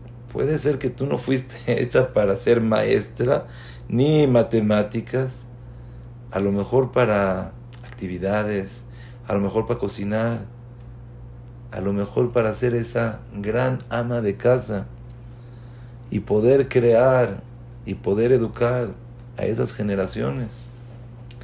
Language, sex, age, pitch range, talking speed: English, male, 50-69, 110-125 Hz, 115 wpm